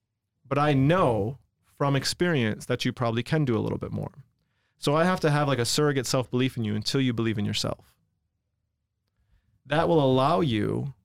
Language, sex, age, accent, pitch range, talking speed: English, male, 30-49, American, 115-140 Hz, 185 wpm